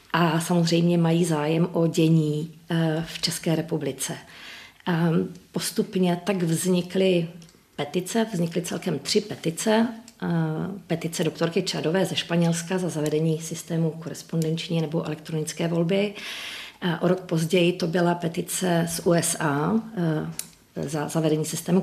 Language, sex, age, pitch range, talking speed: Czech, female, 40-59, 155-180 Hz, 110 wpm